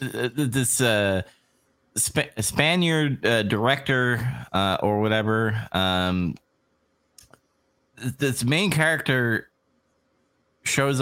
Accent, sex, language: American, male, English